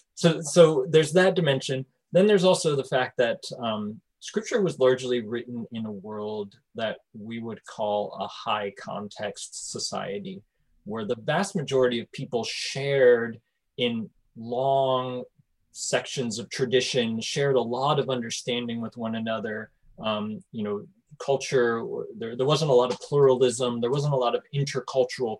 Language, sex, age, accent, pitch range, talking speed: English, male, 30-49, American, 120-155 Hz, 150 wpm